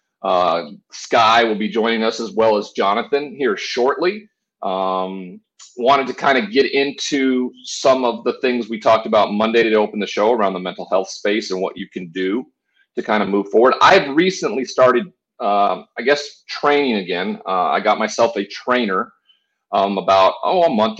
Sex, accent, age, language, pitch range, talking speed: male, American, 40-59, English, 105-145 Hz, 190 wpm